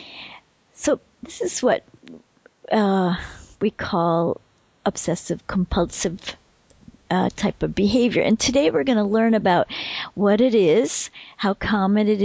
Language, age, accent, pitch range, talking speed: English, 50-69, American, 195-230 Hz, 120 wpm